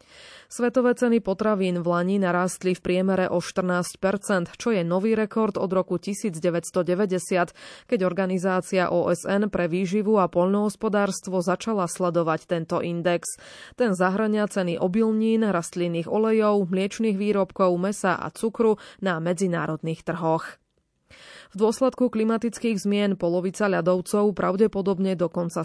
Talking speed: 120 wpm